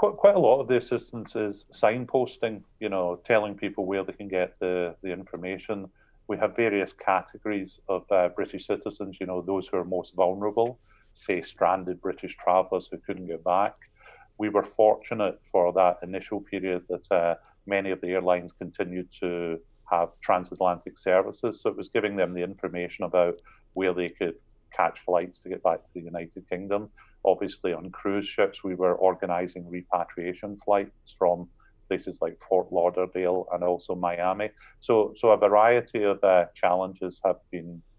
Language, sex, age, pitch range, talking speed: English, male, 40-59, 90-100 Hz, 165 wpm